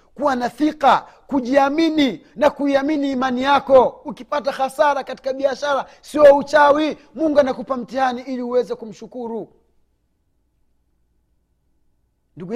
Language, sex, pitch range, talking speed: Swahili, male, 185-275 Hz, 100 wpm